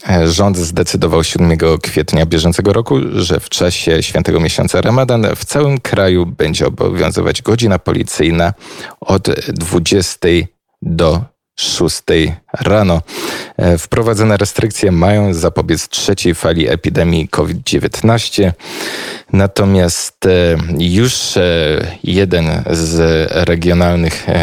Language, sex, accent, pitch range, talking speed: Polish, male, native, 80-100 Hz, 90 wpm